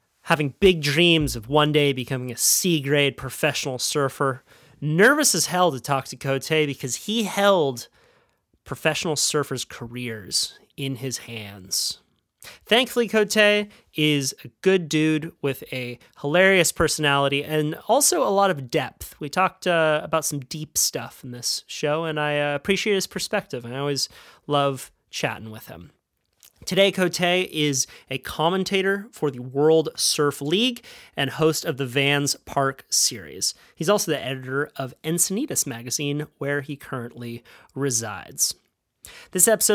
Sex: male